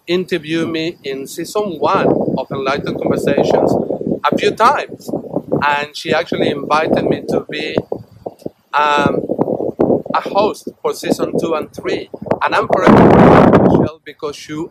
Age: 50-69